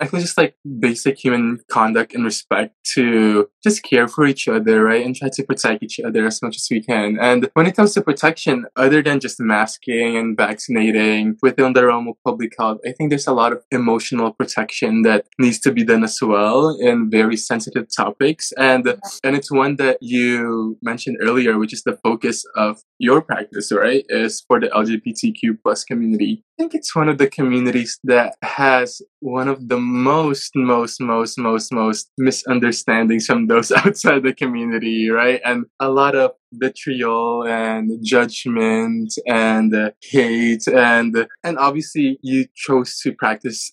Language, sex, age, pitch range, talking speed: English, male, 20-39, 115-140 Hz, 175 wpm